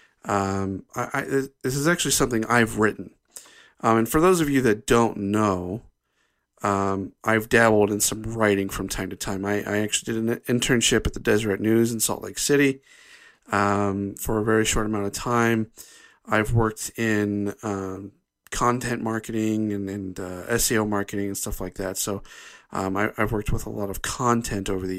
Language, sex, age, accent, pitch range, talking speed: English, male, 40-59, American, 100-130 Hz, 185 wpm